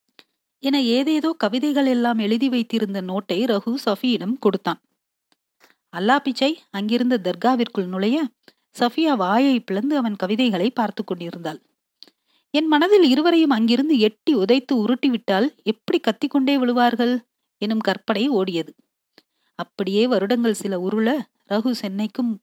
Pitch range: 205-255 Hz